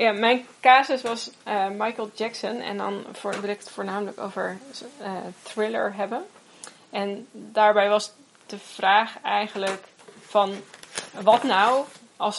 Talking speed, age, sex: 130 wpm, 20-39, female